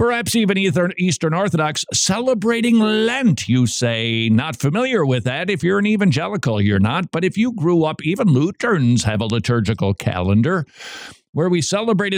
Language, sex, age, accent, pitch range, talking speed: English, male, 50-69, American, 120-180 Hz, 160 wpm